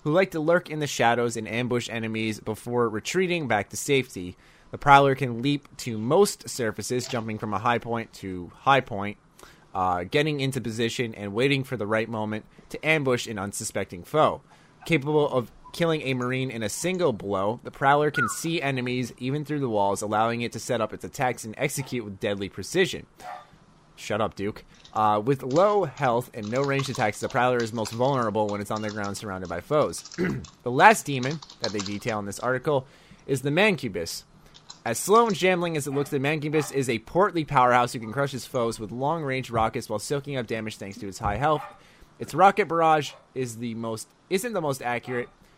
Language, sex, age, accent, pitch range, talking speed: English, male, 30-49, American, 110-145 Hz, 195 wpm